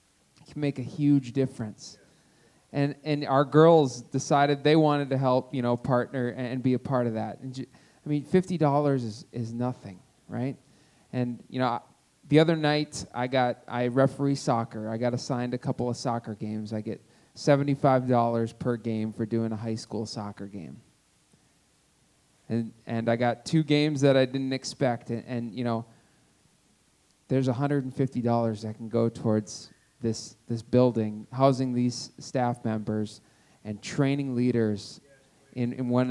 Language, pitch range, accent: English, 115-135 Hz, American